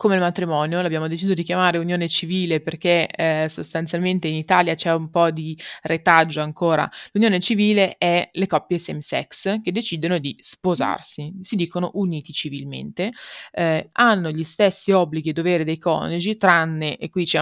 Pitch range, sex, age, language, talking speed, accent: 155-180 Hz, female, 20-39, Italian, 165 wpm, native